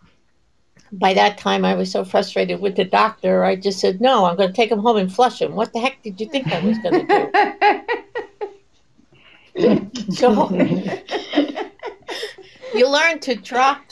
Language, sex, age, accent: English, female, 60-79, American